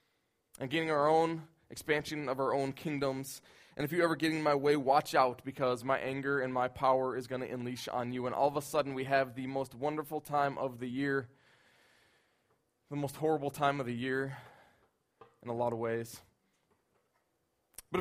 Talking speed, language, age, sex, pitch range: 195 wpm, English, 20-39, male, 135-185 Hz